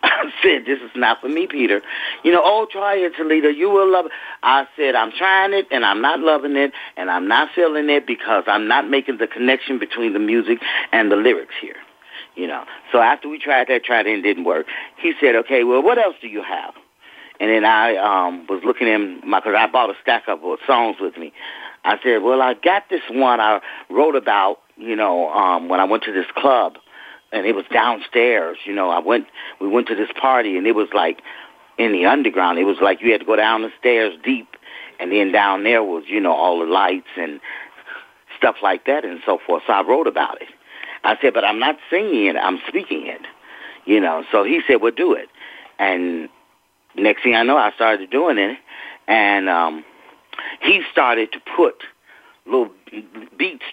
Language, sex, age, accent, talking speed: English, male, 40-59, American, 215 wpm